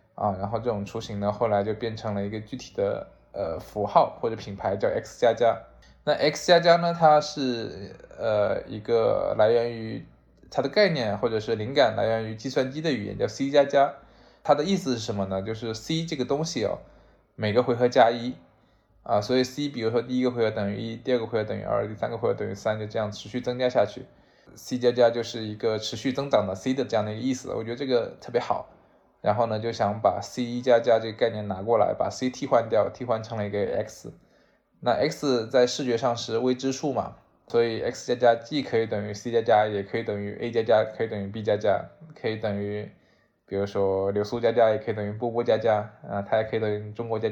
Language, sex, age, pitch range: Chinese, male, 20-39, 105-130 Hz